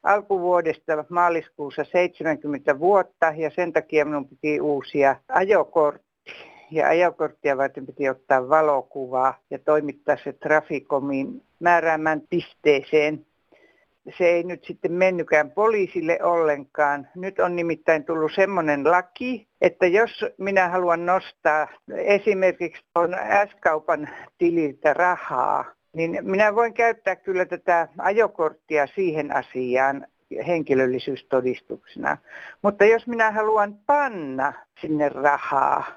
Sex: female